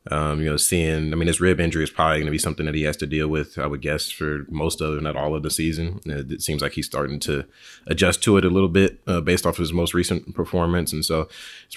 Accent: American